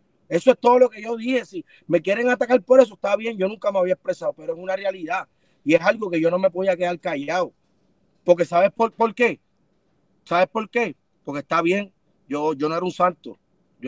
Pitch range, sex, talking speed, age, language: 155-215 Hz, male, 225 wpm, 30-49, Spanish